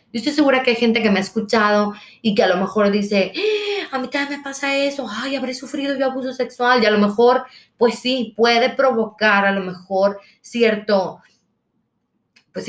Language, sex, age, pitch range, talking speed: Spanish, female, 30-49, 200-260 Hz, 195 wpm